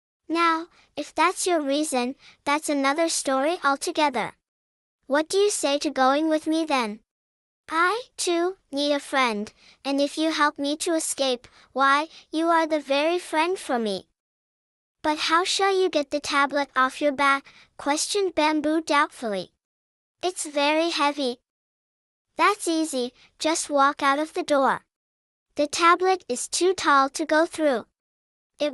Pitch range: 275-330 Hz